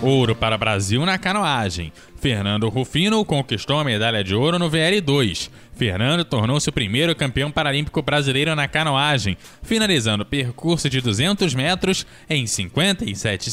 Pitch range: 105-150 Hz